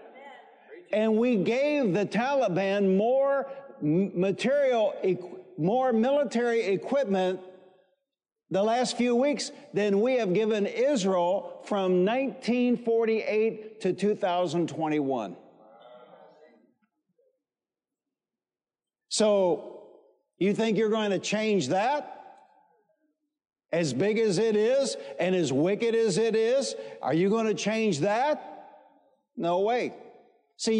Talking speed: 100 wpm